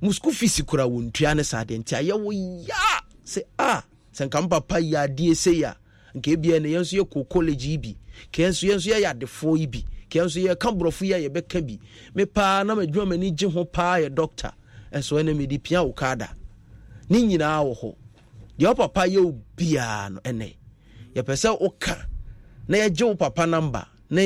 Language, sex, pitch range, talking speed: English, male, 125-185 Hz, 155 wpm